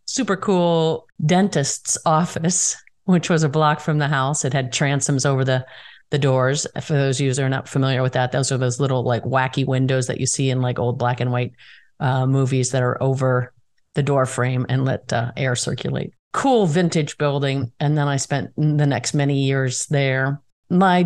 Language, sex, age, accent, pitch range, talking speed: English, female, 50-69, American, 135-170 Hz, 200 wpm